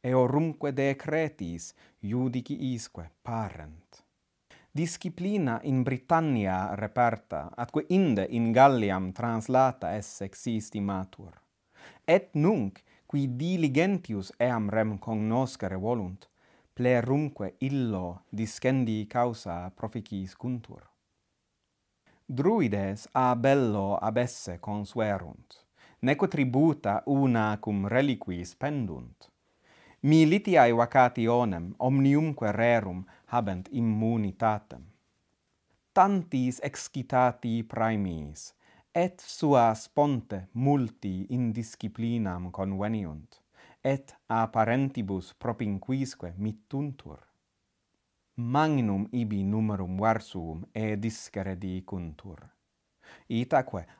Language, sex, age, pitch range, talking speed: English, male, 30-49, 100-130 Hz, 80 wpm